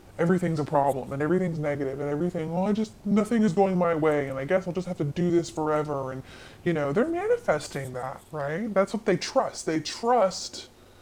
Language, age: English, 20-39